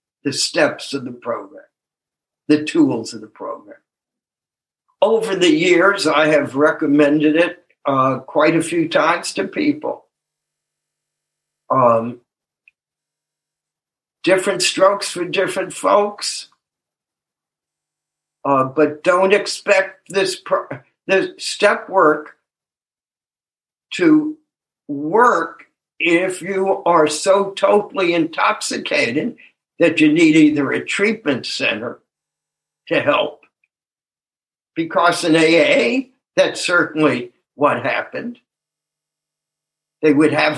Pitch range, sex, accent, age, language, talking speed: 150-200 Hz, male, American, 60-79, English, 95 wpm